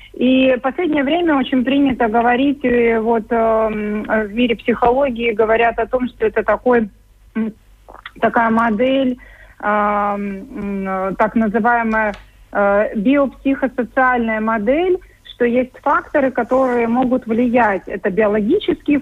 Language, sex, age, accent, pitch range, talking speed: Russian, female, 30-49, native, 210-255 Hz, 105 wpm